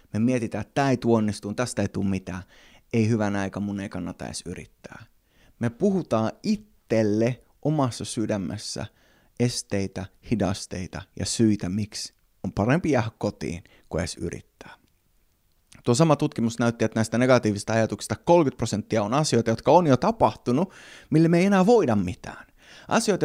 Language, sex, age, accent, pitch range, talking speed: Finnish, male, 20-39, native, 100-130 Hz, 150 wpm